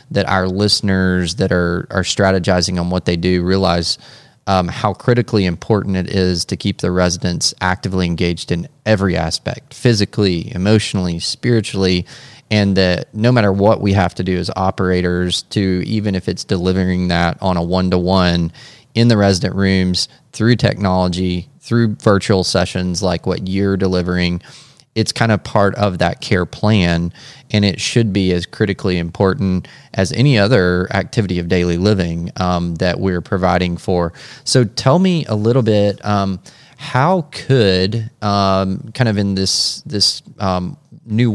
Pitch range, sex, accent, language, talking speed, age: 90-110 Hz, male, American, English, 155 wpm, 20-39